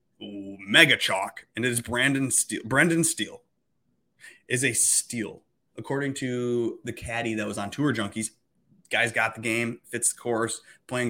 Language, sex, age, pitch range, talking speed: English, male, 20-39, 105-125 Hz, 160 wpm